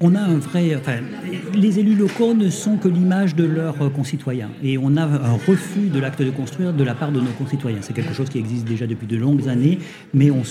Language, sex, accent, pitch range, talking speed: French, male, French, 125-160 Hz, 240 wpm